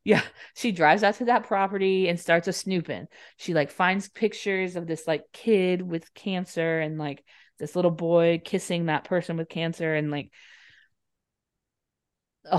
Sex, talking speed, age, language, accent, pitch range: female, 160 wpm, 30-49, English, American, 165-220 Hz